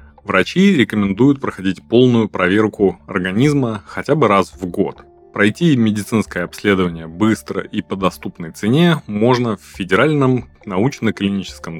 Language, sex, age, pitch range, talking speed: Russian, male, 20-39, 90-120 Hz, 115 wpm